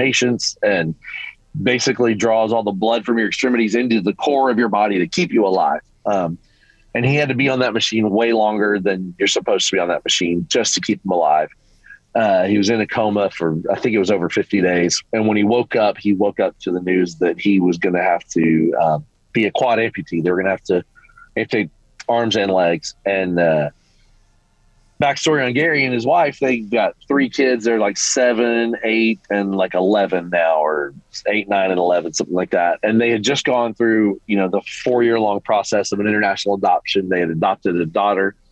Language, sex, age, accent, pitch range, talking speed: English, male, 30-49, American, 100-120 Hz, 215 wpm